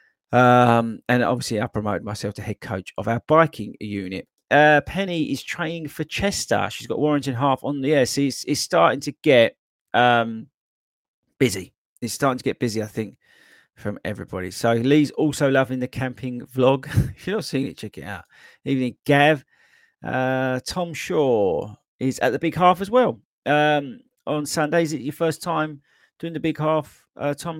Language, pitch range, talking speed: English, 115-155 Hz, 180 wpm